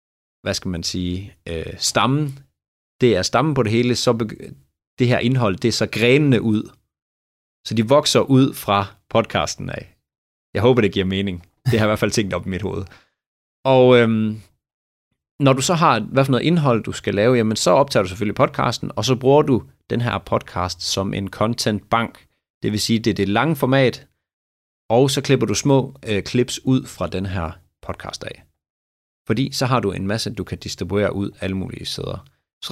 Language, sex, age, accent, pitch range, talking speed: Danish, male, 30-49, native, 95-125 Hz, 200 wpm